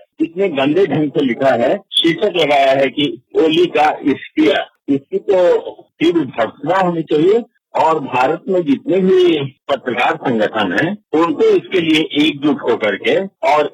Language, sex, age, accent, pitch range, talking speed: Hindi, male, 50-69, native, 135-210 Hz, 155 wpm